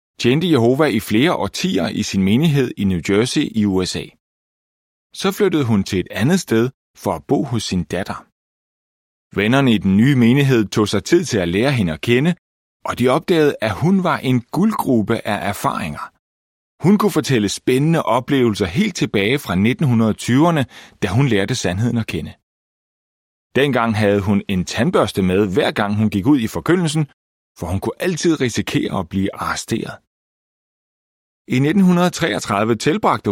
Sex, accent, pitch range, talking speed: male, native, 100-145 Hz, 160 wpm